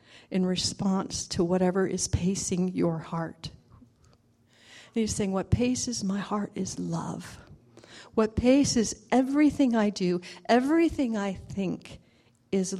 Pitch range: 170-225 Hz